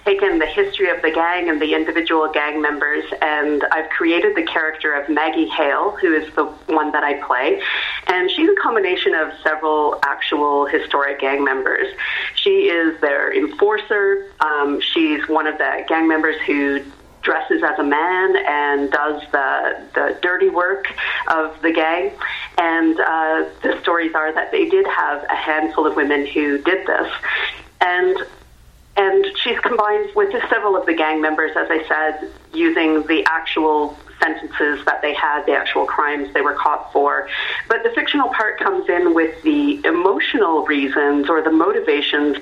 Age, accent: 40-59, American